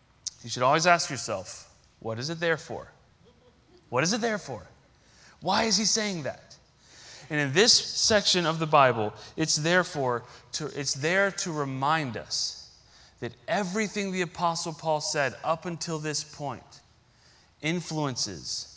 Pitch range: 150-190 Hz